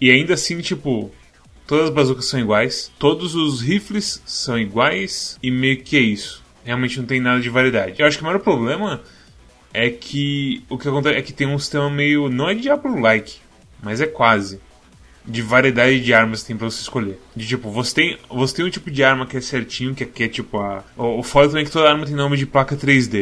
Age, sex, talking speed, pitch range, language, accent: 10-29, male, 225 wpm, 120-145 Hz, Portuguese, Brazilian